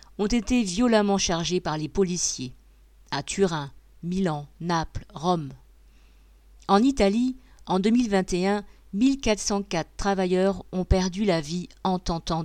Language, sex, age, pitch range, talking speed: French, female, 50-69, 155-205 Hz, 115 wpm